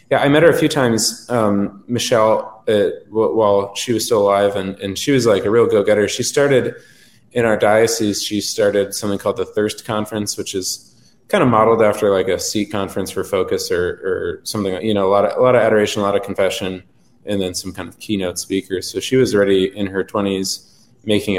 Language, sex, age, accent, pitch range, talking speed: English, male, 20-39, American, 95-135 Hz, 220 wpm